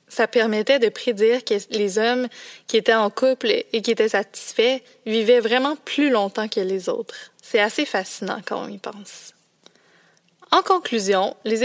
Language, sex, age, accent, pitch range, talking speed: French, female, 20-39, Canadian, 210-265 Hz, 165 wpm